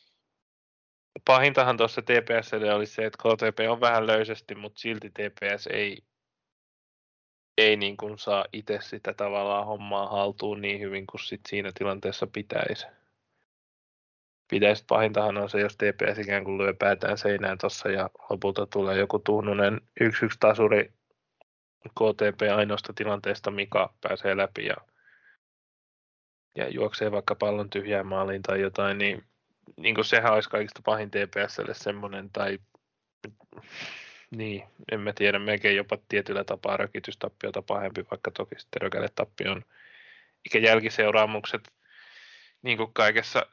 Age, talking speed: 20-39, 125 wpm